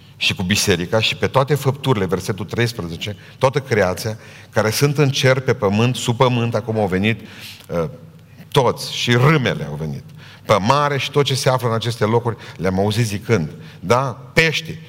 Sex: male